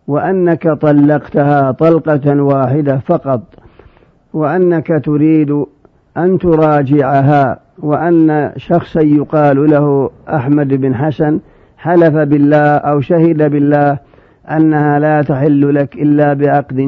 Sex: male